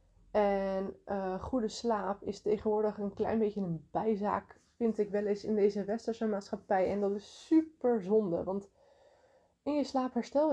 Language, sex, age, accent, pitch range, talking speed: Dutch, female, 20-39, Dutch, 200-235 Hz, 165 wpm